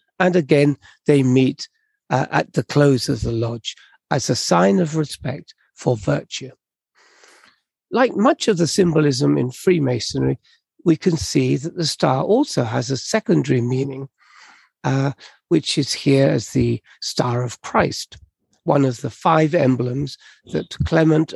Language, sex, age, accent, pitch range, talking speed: English, male, 60-79, British, 130-170 Hz, 145 wpm